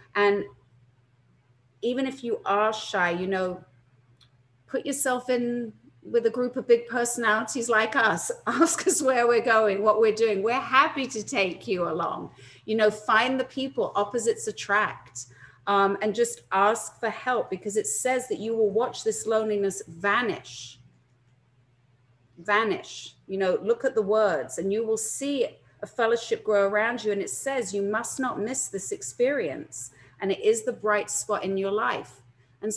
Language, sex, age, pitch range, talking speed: English, female, 40-59, 190-235 Hz, 165 wpm